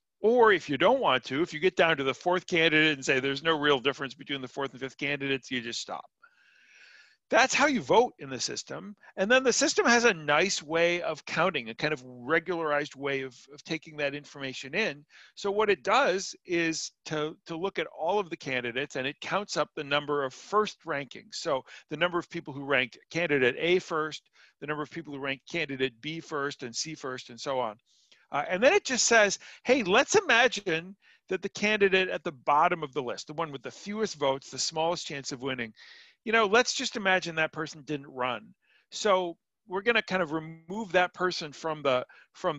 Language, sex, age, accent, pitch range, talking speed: English, male, 40-59, American, 145-195 Hz, 215 wpm